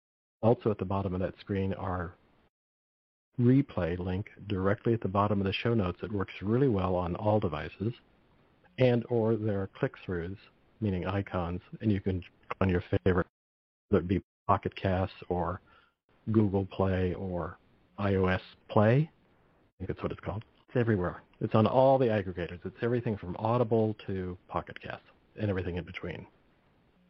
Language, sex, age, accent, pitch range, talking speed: English, male, 50-69, American, 95-120 Hz, 160 wpm